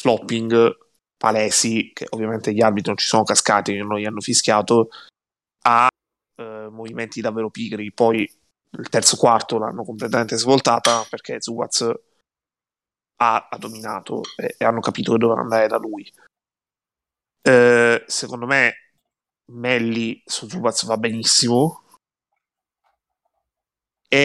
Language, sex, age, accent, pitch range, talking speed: Italian, male, 20-39, native, 110-125 Hz, 125 wpm